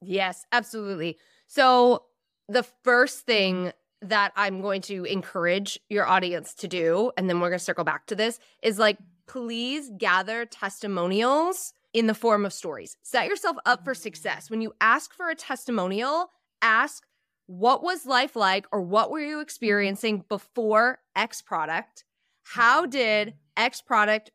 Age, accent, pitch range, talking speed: 20-39, American, 195-245 Hz, 155 wpm